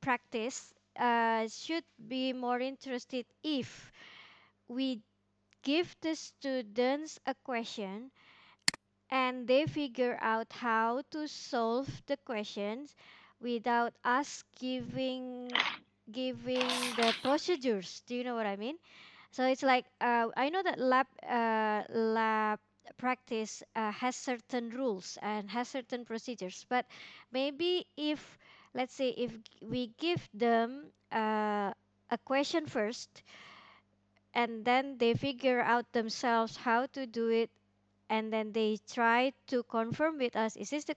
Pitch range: 225-265 Hz